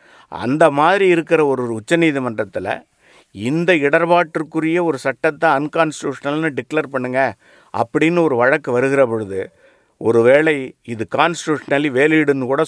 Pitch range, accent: 125-160 Hz, Indian